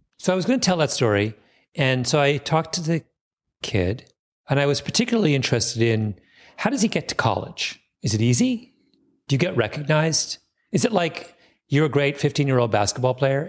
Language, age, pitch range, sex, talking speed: English, 40-59, 120-170 Hz, male, 190 wpm